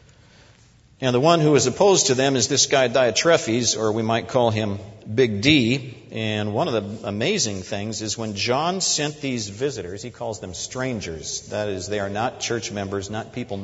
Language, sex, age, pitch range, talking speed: English, male, 50-69, 110-140 Hz, 195 wpm